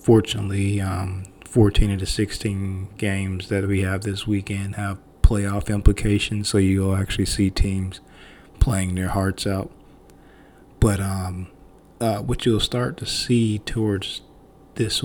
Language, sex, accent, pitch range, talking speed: English, male, American, 95-110 Hz, 135 wpm